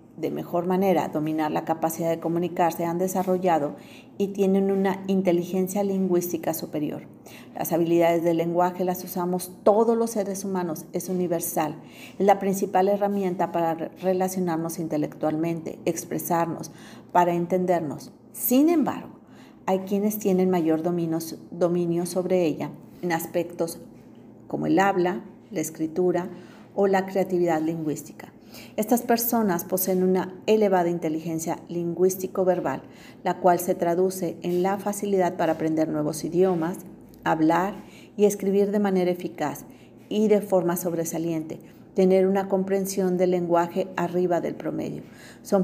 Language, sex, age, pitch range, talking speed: Spanish, female, 40-59, 170-195 Hz, 125 wpm